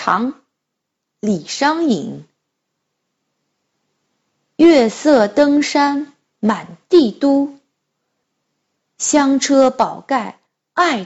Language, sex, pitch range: Chinese, female, 230-320 Hz